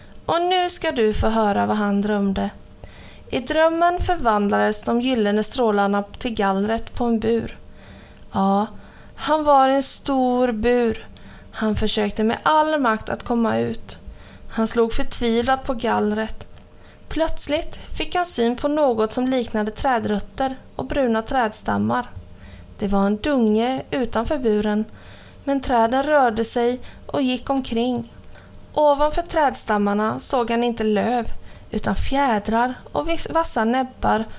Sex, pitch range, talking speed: female, 210-270 Hz, 130 wpm